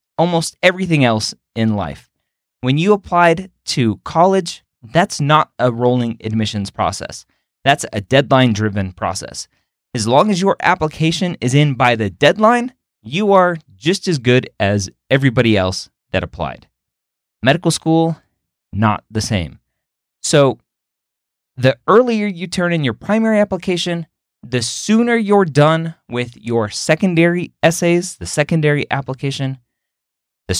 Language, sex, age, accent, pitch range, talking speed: English, male, 20-39, American, 115-175 Hz, 130 wpm